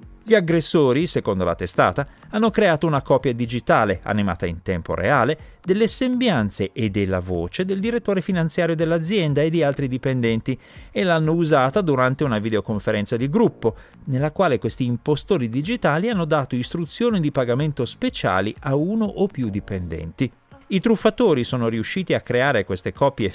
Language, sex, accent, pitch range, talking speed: Italian, male, native, 110-170 Hz, 150 wpm